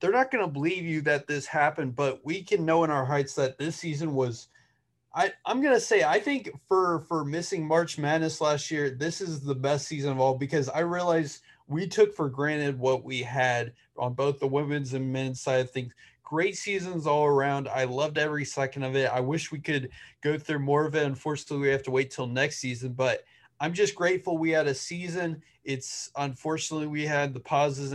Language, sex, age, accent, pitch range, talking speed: English, male, 30-49, American, 135-155 Hz, 215 wpm